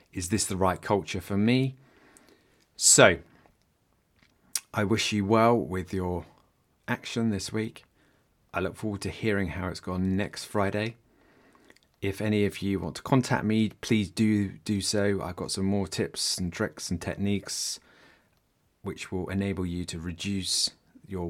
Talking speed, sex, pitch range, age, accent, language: 155 wpm, male, 90-105 Hz, 30-49, British, English